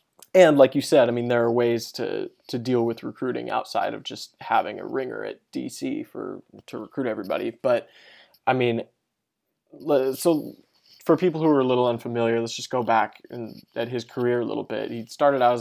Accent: American